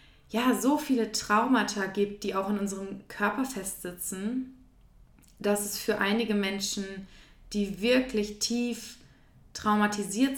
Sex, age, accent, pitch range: female, 20-39, German, 200-225 Hz